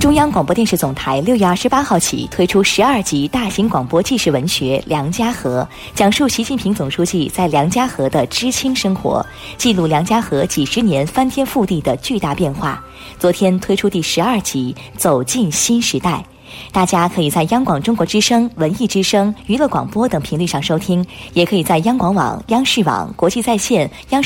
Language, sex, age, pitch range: Chinese, female, 20-39, 165-235 Hz